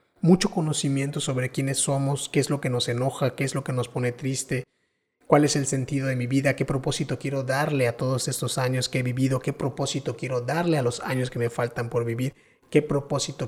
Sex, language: male, Spanish